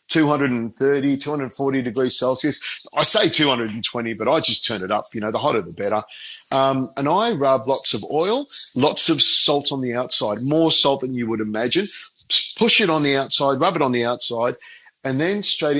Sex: male